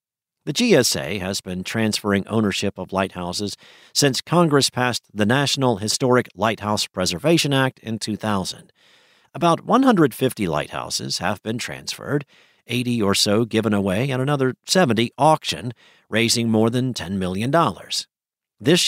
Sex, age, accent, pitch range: male, 50-69, American, 110-140 Hz